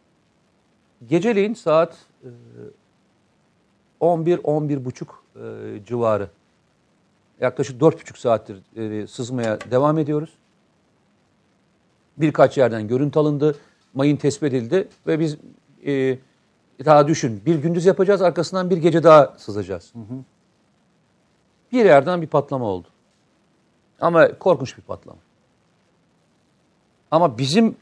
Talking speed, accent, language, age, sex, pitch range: 85 wpm, native, Turkish, 50-69, male, 120-165 Hz